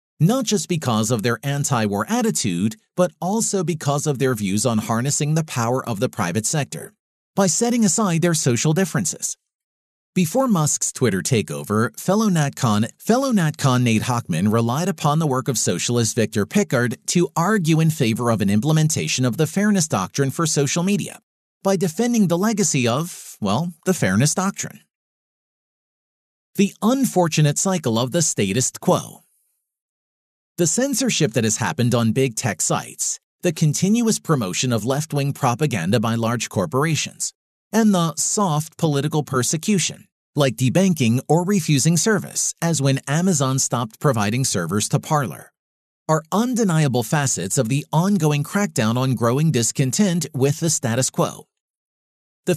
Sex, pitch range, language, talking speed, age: male, 120-180 Hz, English, 145 wpm, 40-59